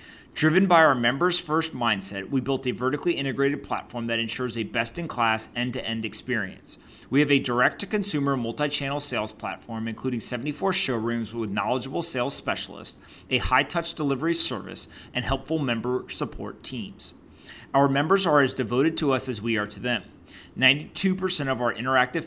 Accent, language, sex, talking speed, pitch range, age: American, English, male, 150 wpm, 115-150 Hz, 30-49